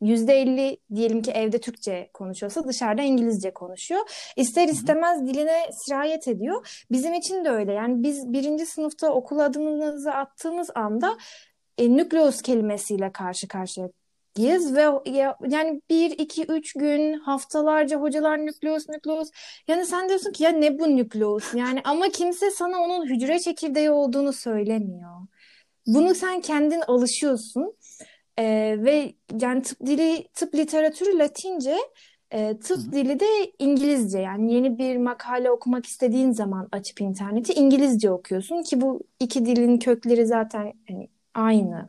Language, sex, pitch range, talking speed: Turkish, female, 220-310 Hz, 135 wpm